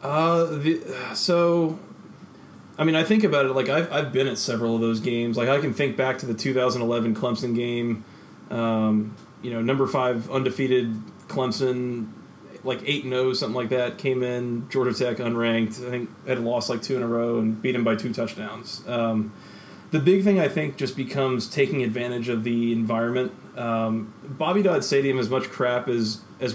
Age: 30-49